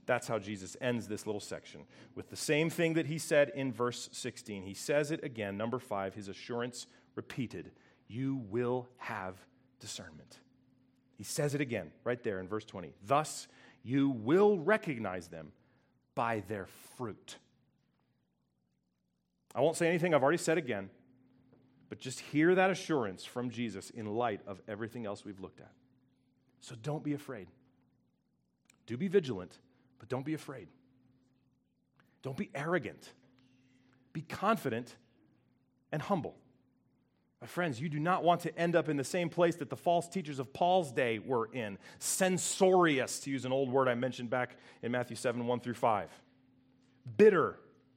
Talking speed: 160 wpm